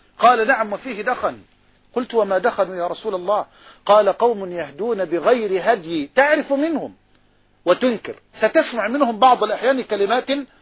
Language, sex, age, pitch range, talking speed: Arabic, male, 50-69, 195-260 Hz, 130 wpm